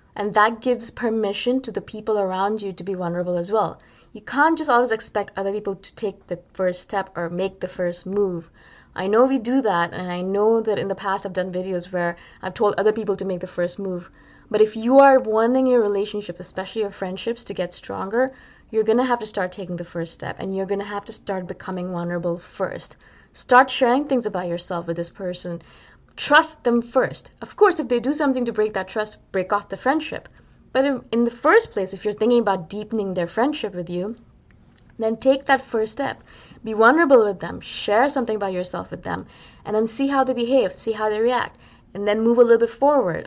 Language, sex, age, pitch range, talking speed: English, female, 20-39, 185-240 Hz, 220 wpm